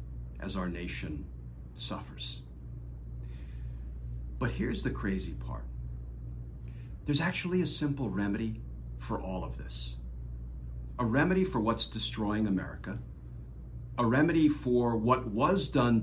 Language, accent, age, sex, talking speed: English, American, 50-69, male, 110 wpm